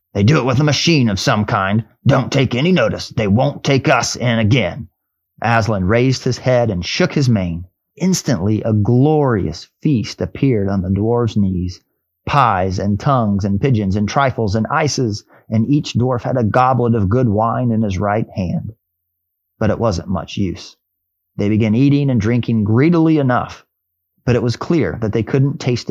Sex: male